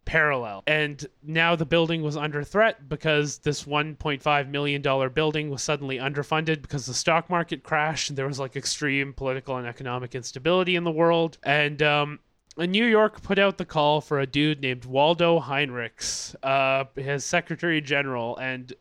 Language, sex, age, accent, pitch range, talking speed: English, male, 20-39, American, 135-165 Hz, 165 wpm